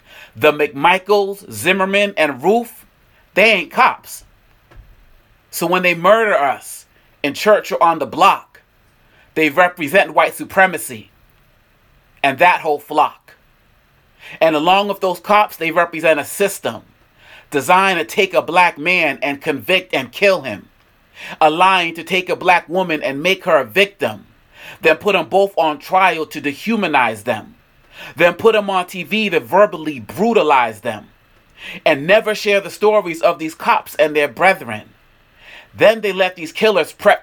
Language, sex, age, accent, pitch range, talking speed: English, male, 40-59, American, 150-200 Hz, 150 wpm